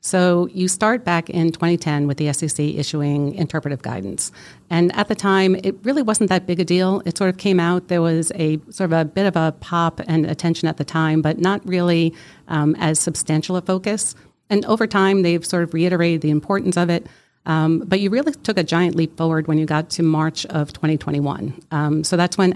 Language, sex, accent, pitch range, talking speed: English, female, American, 150-180 Hz, 220 wpm